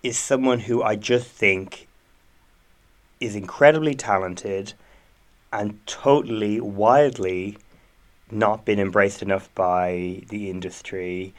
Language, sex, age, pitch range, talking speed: English, male, 30-49, 100-120 Hz, 100 wpm